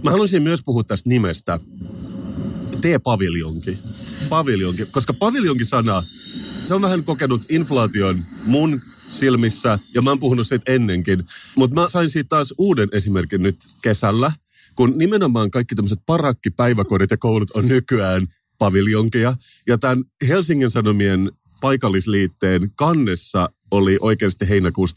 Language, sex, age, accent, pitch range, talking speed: Finnish, male, 30-49, native, 95-130 Hz, 125 wpm